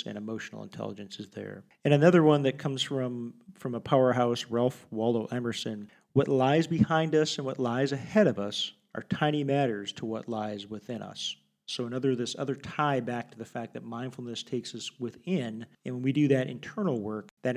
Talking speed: 195 wpm